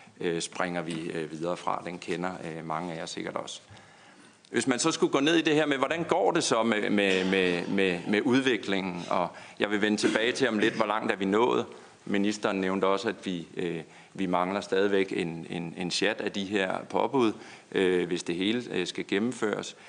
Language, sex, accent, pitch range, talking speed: Danish, male, native, 90-110 Hz, 195 wpm